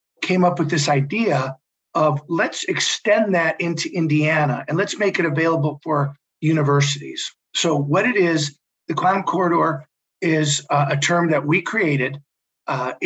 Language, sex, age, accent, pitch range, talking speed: English, male, 50-69, American, 145-175 Hz, 150 wpm